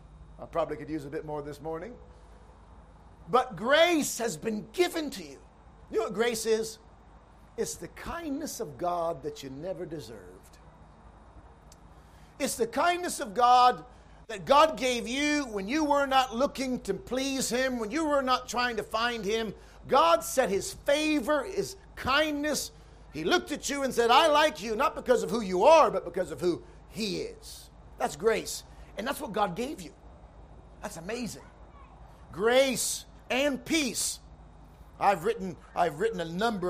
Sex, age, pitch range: male, 50-69, 175-265 Hz